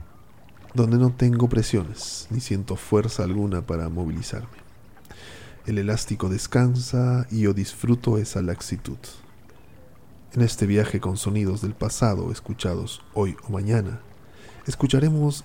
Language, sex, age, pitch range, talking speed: Spanish, male, 40-59, 95-125 Hz, 115 wpm